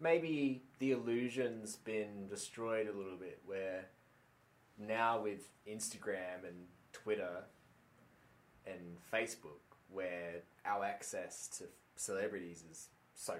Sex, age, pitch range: male, 20-39, 85-100 Hz